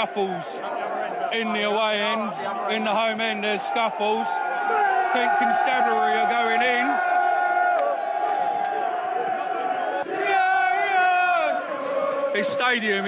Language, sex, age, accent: English, male, 30-49, British